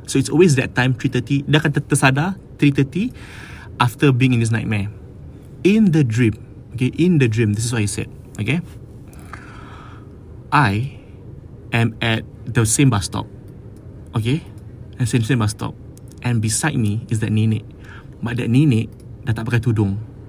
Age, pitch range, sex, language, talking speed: 20-39, 110-135 Hz, male, English, 160 wpm